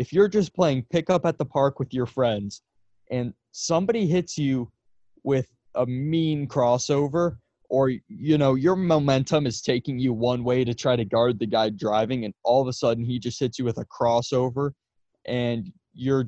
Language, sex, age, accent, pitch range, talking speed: English, male, 20-39, American, 110-145 Hz, 185 wpm